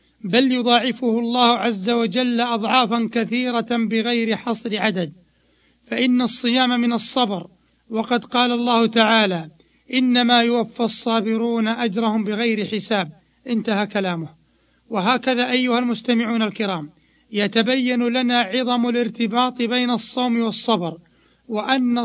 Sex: male